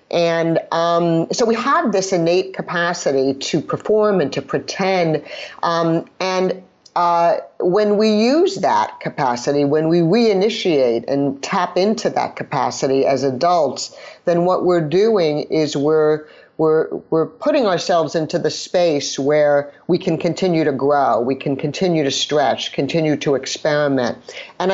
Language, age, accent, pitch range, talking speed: English, 50-69, American, 150-180 Hz, 145 wpm